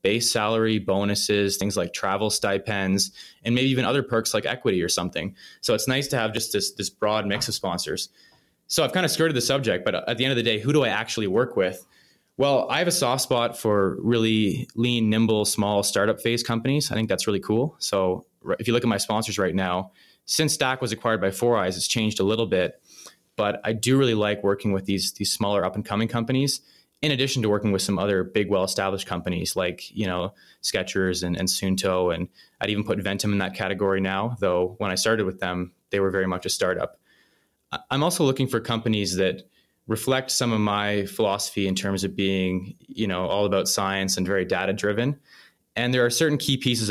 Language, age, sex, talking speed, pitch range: English, 20-39, male, 215 wpm, 95-115 Hz